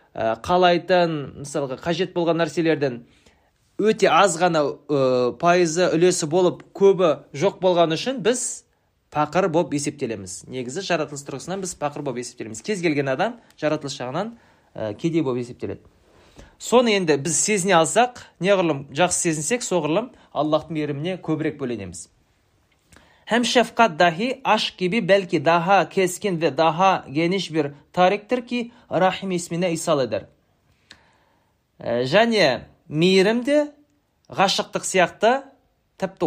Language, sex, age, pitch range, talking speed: Ukrainian, male, 30-49, 150-195 Hz, 110 wpm